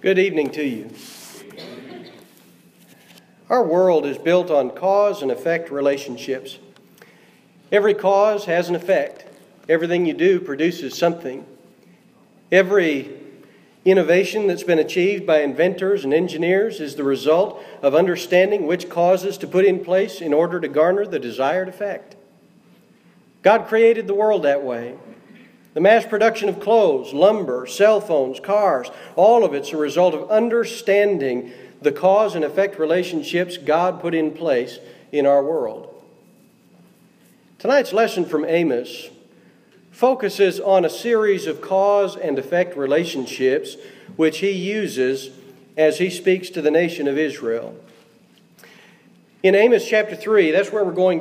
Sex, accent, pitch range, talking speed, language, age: male, American, 155-205 Hz, 135 wpm, English, 40-59